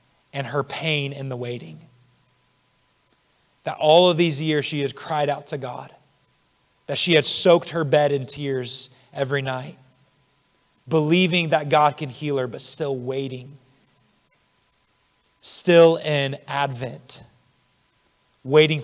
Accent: American